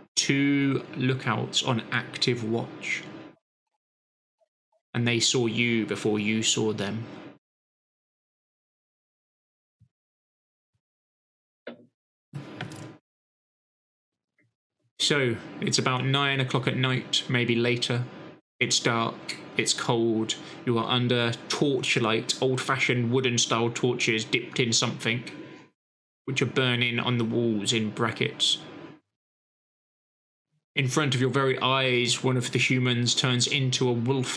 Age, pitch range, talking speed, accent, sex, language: 20-39, 120-135 Hz, 100 wpm, British, male, English